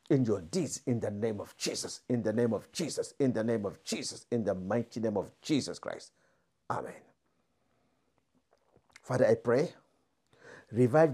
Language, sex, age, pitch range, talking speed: English, male, 60-79, 120-170 Hz, 160 wpm